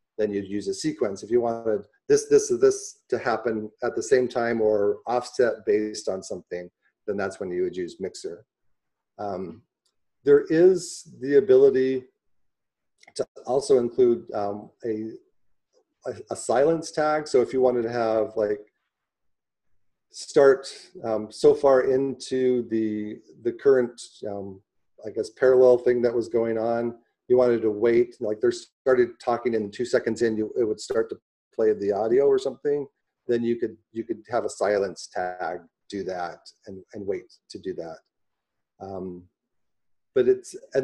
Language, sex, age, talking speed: English, male, 40-59, 165 wpm